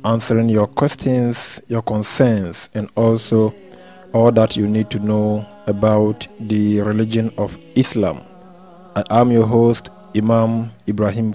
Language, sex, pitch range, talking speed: English, male, 110-125 Hz, 125 wpm